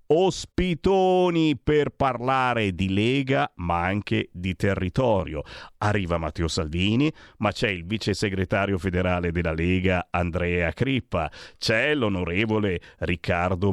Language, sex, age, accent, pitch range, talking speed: Italian, male, 40-59, native, 90-120 Hz, 110 wpm